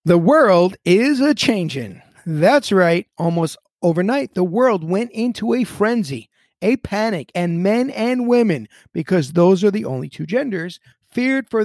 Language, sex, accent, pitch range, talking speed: English, male, American, 150-215 Hz, 155 wpm